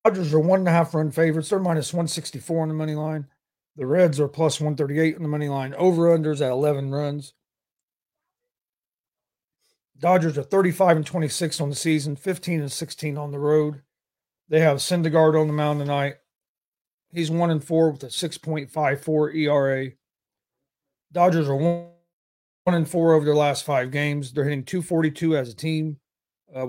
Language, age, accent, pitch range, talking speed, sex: English, 40-59, American, 140-165 Hz, 190 wpm, male